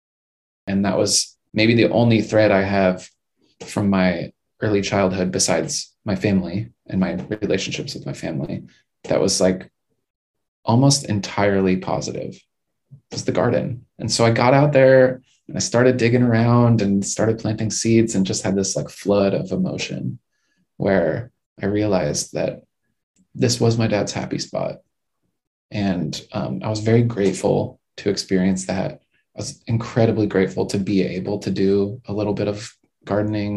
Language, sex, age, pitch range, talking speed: English, male, 20-39, 95-115 Hz, 155 wpm